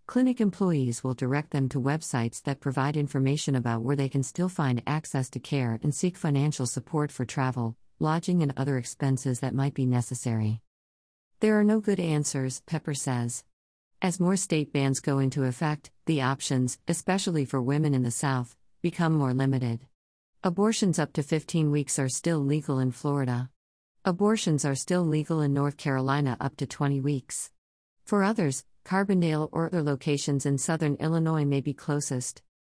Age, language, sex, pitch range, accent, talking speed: 50-69, English, female, 130-160 Hz, American, 165 wpm